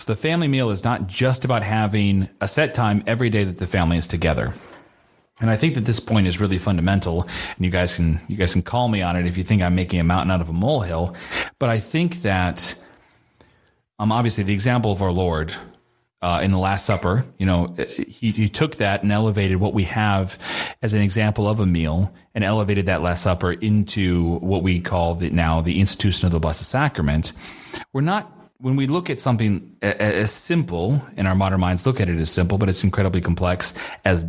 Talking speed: 215 wpm